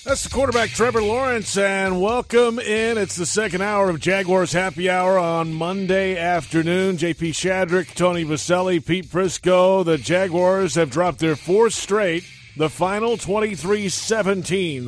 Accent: American